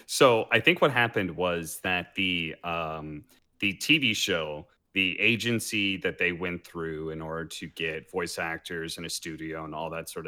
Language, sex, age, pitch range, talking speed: English, male, 30-49, 80-100 Hz, 180 wpm